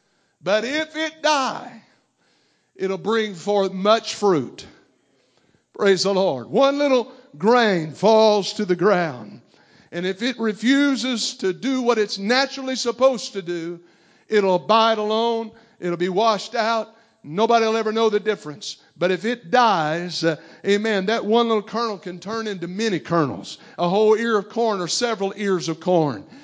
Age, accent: 50-69, American